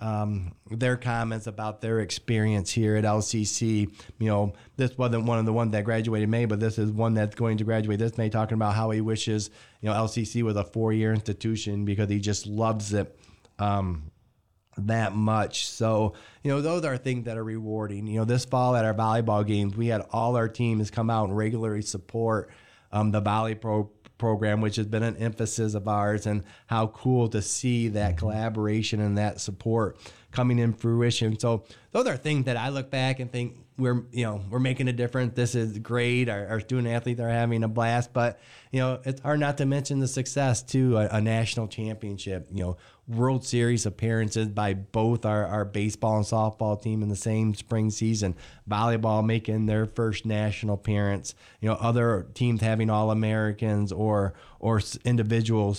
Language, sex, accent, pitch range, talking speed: English, male, American, 105-120 Hz, 190 wpm